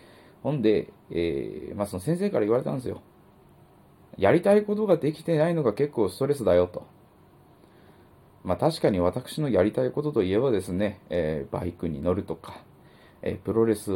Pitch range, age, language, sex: 90-120 Hz, 20-39, Japanese, male